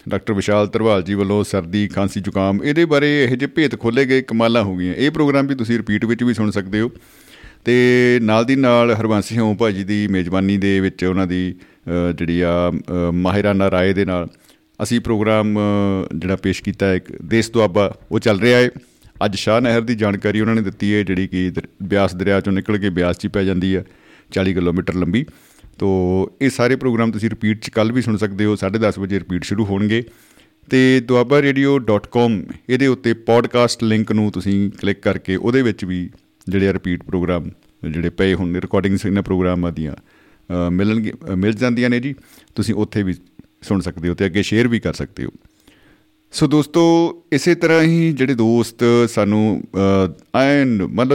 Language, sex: Punjabi, male